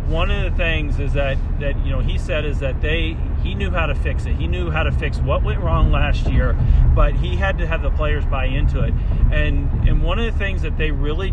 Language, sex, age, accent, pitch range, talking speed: English, male, 40-59, American, 70-75 Hz, 260 wpm